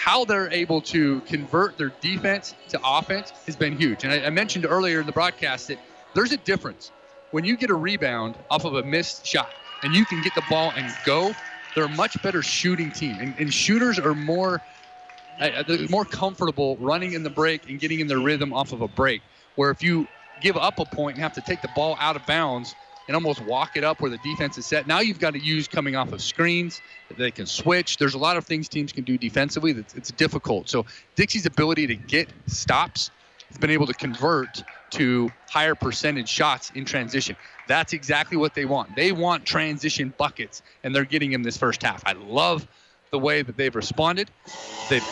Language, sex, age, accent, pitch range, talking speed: English, male, 30-49, American, 140-175 Hz, 210 wpm